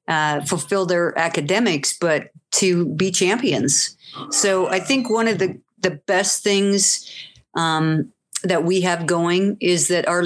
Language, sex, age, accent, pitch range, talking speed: English, female, 50-69, American, 160-190 Hz, 145 wpm